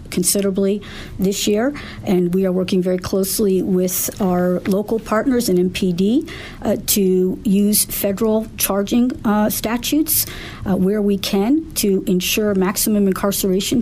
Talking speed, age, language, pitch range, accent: 130 wpm, 50-69, English, 180-205 Hz, American